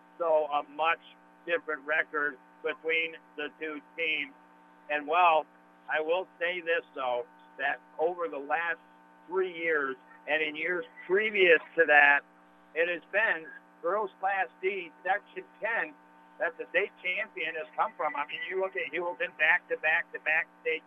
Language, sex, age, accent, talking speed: English, male, 50-69, American, 155 wpm